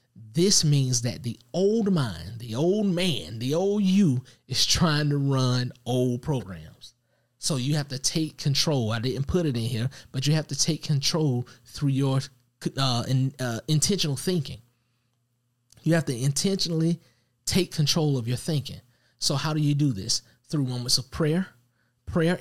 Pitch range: 120-155 Hz